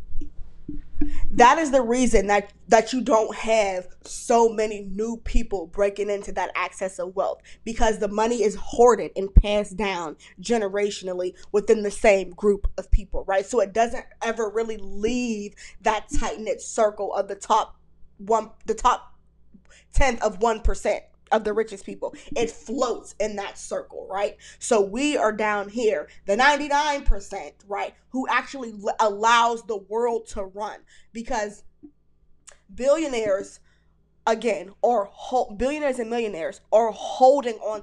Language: English